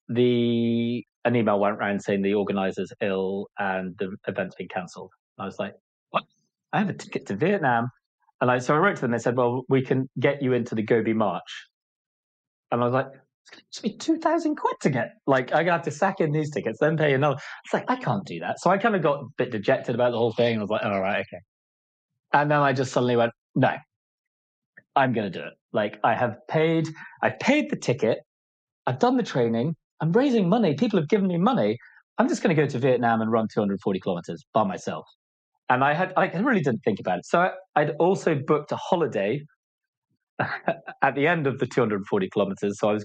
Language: English